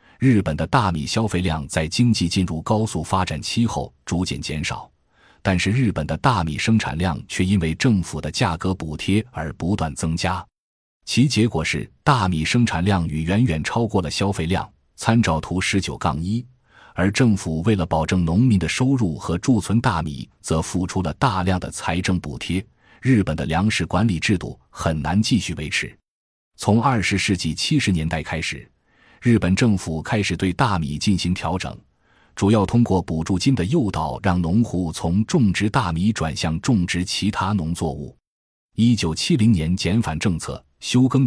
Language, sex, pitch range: Chinese, male, 80-110 Hz